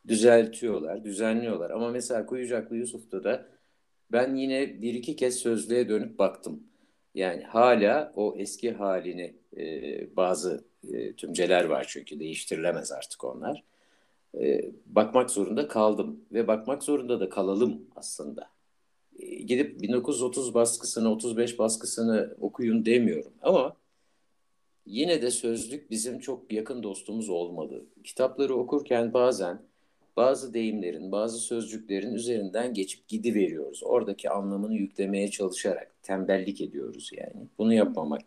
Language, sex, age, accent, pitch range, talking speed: Turkish, male, 60-79, native, 95-120 Hz, 120 wpm